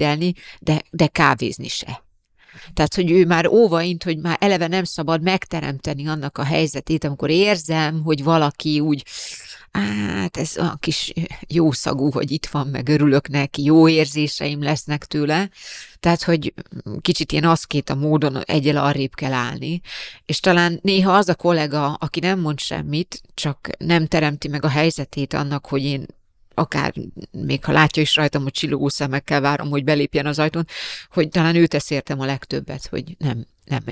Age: 30-49